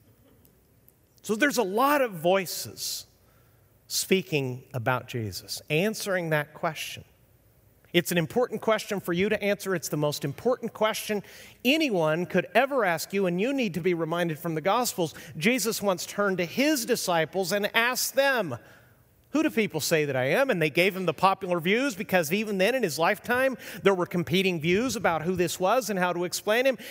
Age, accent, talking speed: 40-59, American, 180 wpm